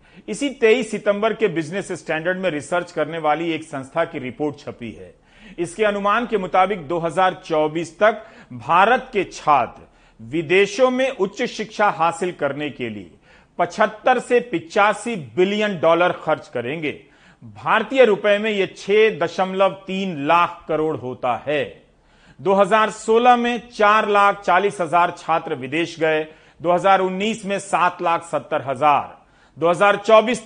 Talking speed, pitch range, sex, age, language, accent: 120 wpm, 160-220 Hz, male, 40-59, Hindi, native